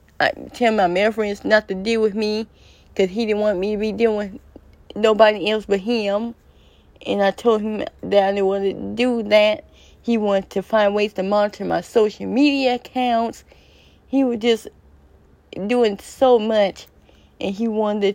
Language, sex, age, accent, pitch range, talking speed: English, female, 20-39, American, 200-235 Hz, 180 wpm